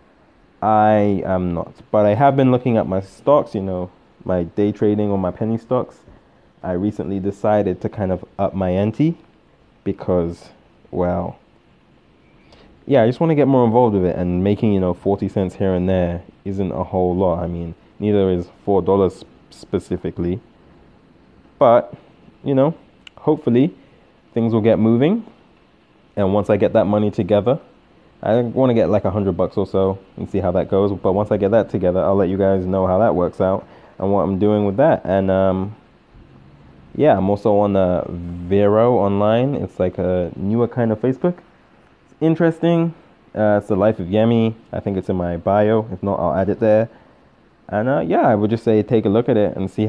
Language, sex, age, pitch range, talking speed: English, male, 20-39, 95-115 Hz, 195 wpm